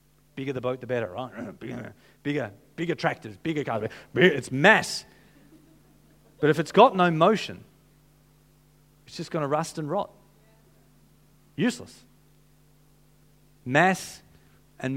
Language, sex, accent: English, male, Australian